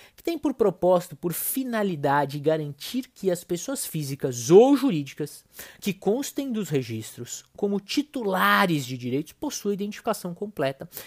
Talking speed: 130 wpm